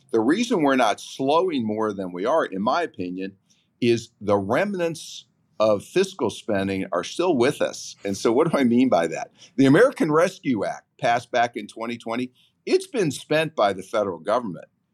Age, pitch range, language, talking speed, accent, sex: 50-69, 100-135 Hz, English, 180 wpm, American, male